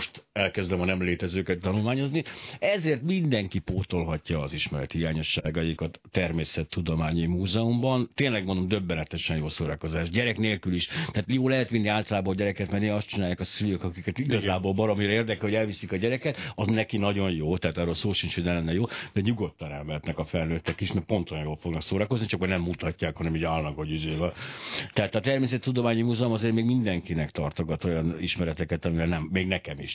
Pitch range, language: 85-110 Hz, Hungarian